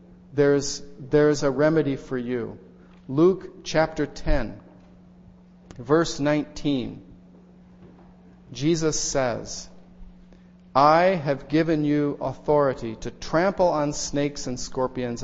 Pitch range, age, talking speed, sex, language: 130-180 Hz, 40-59, 100 wpm, male, English